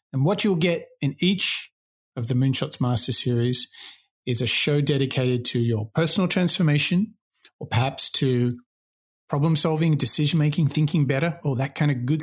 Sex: male